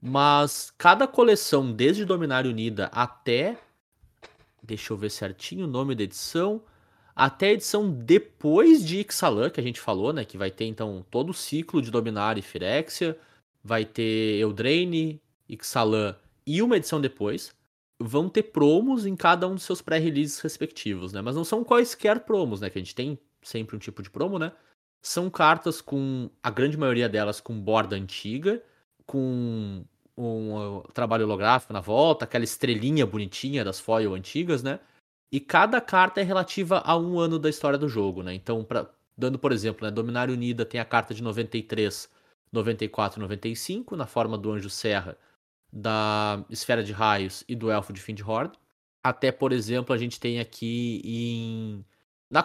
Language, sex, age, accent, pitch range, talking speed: Portuguese, male, 20-39, Brazilian, 110-155 Hz, 170 wpm